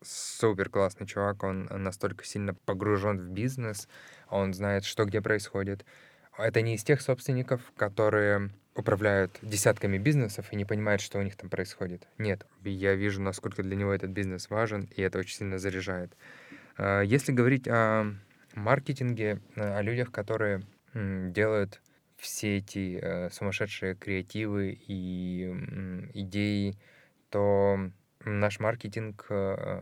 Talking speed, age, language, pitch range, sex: 125 wpm, 20-39, Ukrainian, 95-110 Hz, male